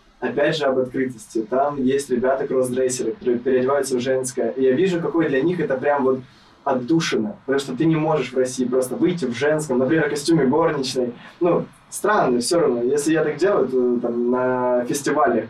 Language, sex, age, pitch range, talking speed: Russian, male, 20-39, 120-145 Hz, 185 wpm